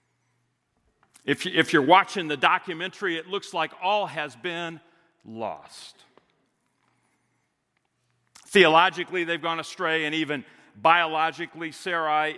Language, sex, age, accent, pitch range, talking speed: English, male, 50-69, American, 130-175 Hz, 95 wpm